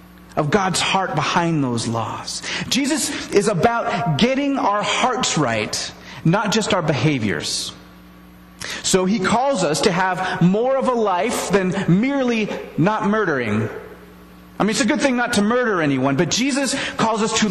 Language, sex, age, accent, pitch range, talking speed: English, male, 30-49, American, 145-240 Hz, 160 wpm